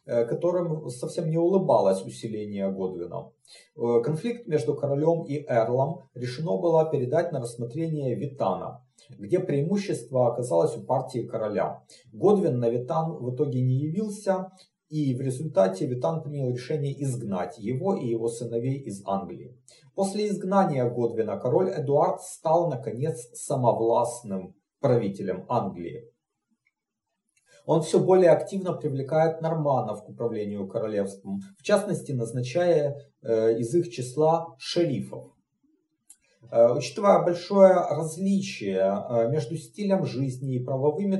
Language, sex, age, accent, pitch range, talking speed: Russian, male, 40-59, native, 120-165 Hz, 110 wpm